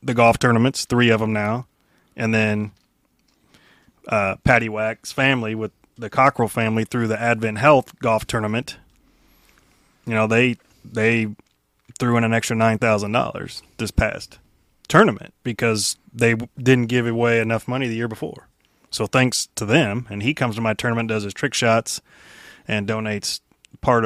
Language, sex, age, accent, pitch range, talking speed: English, male, 20-39, American, 110-125 Hz, 155 wpm